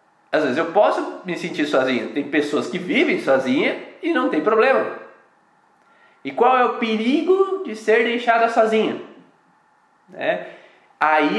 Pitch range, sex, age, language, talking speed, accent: 195-310 Hz, male, 20-39, Portuguese, 140 wpm, Brazilian